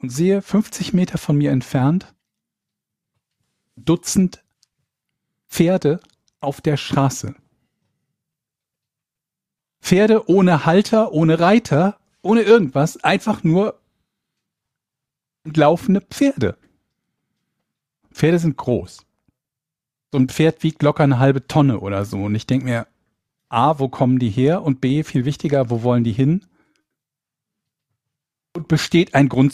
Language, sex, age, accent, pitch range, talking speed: German, male, 50-69, German, 125-160 Hz, 115 wpm